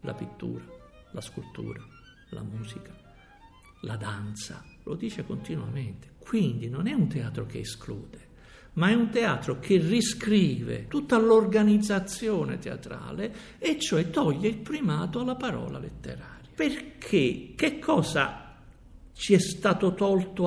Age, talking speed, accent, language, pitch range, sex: 60-79, 125 wpm, native, Italian, 150-220 Hz, male